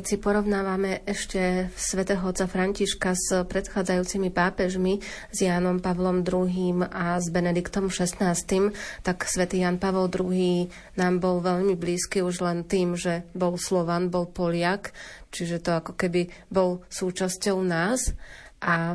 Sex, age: female, 30-49